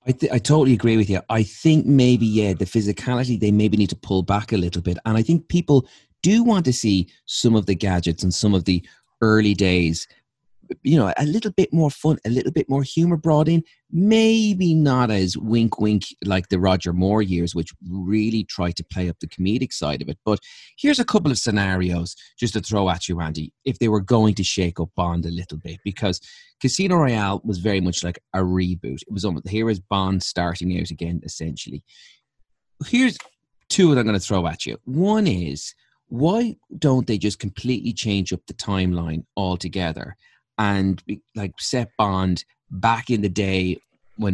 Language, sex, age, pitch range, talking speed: English, male, 30-49, 90-125 Hz, 200 wpm